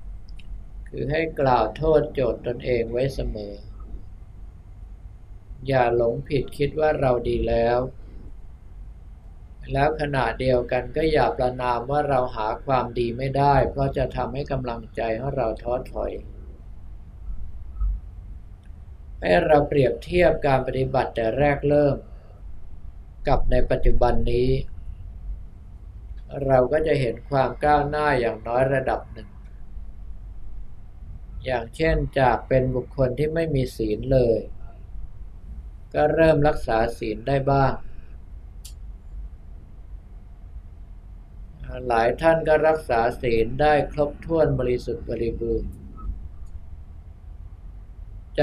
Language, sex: Thai, male